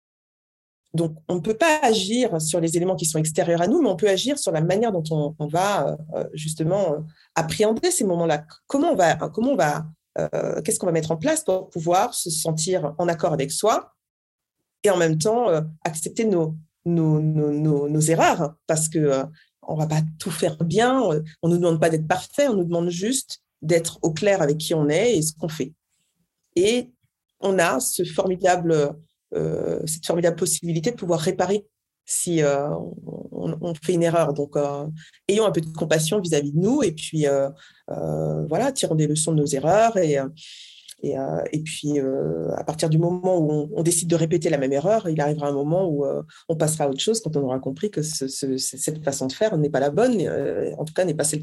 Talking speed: 215 wpm